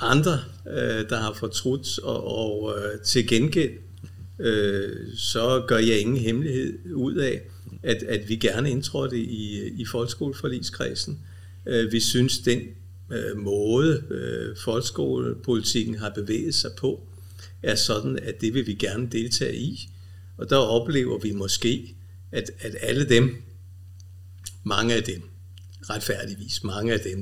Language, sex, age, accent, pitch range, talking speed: Danish, male, 60-79, native, 95-115 Hz, 115 wpm